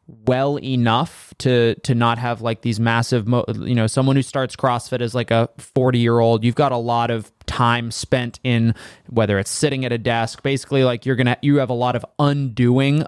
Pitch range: 115-130 Hz